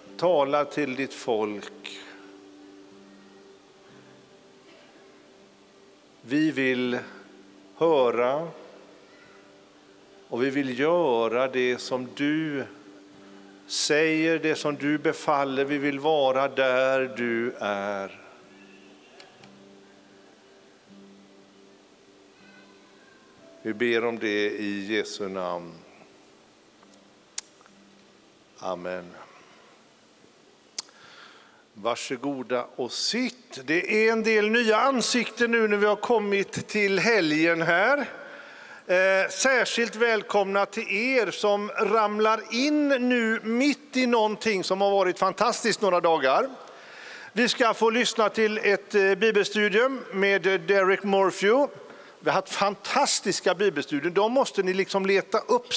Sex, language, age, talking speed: male, English, 50-69, 95 wpm